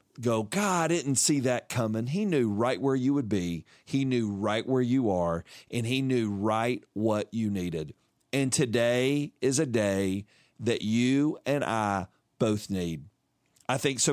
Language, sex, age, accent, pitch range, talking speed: English, male, 40-59, American, 105-135 Hz, 175 wpm